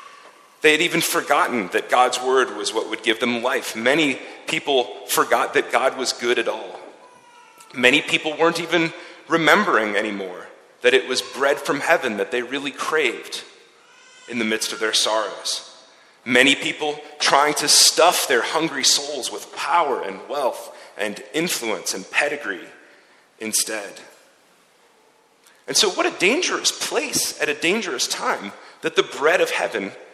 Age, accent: 40-59, American